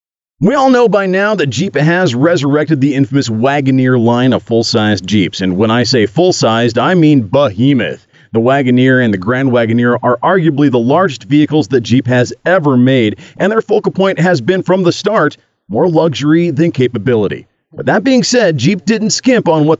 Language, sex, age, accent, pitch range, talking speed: English, male, 40-59, American, 125-180 Hz, 190 wpm